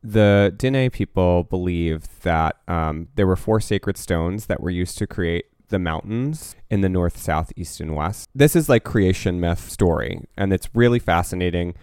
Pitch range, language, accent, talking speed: 85-105 Hz, English, American, 180 wpm